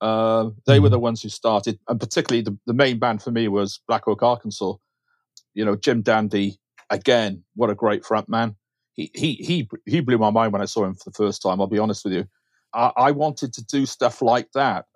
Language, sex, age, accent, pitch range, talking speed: English, male, 40-59, British, 105-130 Hz, 230 wpm